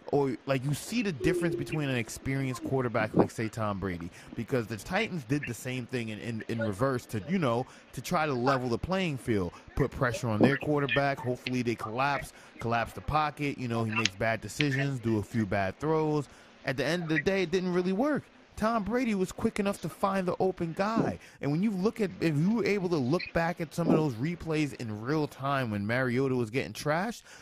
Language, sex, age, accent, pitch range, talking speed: English, male, 20-39, American, 120-175 Hz, 225 wpm